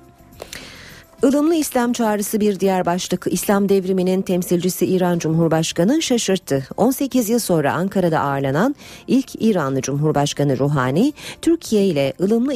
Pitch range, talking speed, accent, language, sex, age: 145-215 Hz, 115 wpm, native, Turkish, female, 40-59